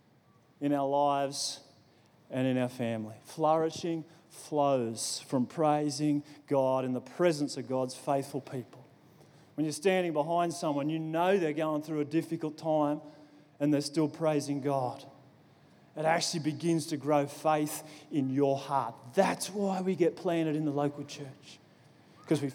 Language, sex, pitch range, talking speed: English, male, 140-175 Hz, 150 wpm